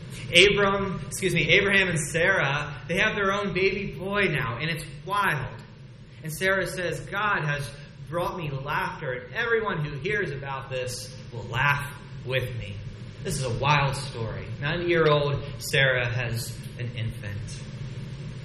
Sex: male